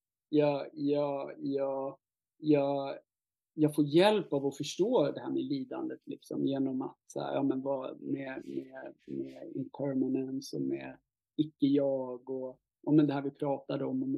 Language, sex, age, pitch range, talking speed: English, male, 30-49, 140-170 Hz, 155 wpm